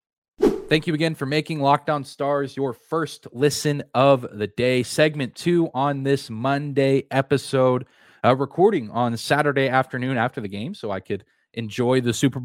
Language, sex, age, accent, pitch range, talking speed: English, male, 20-39, American, 120-145 Hz, 160 wpm